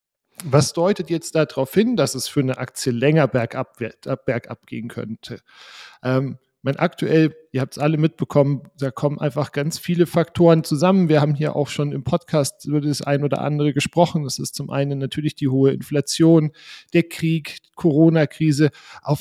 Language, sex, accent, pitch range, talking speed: German, male, German, 135-160 Hz, 170 wpm